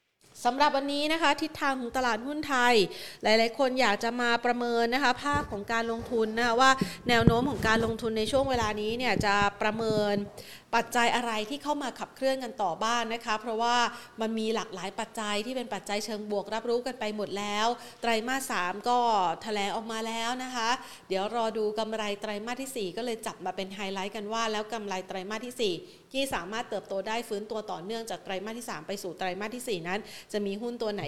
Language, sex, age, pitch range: Thai, female, 30-49, 200-240 Hz